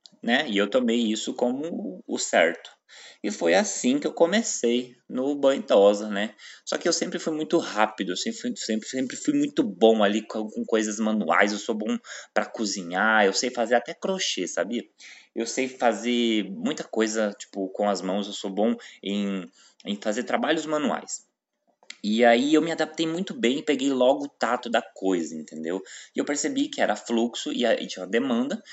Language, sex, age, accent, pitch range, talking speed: Portuguese, male, 20-39, Brazilian, 105-165 Hz, 185 wpm